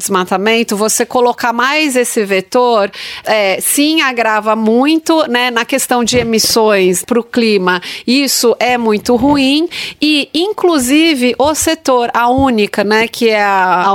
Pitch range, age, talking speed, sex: 225-280 Hz, 30-49, 135 wpm, female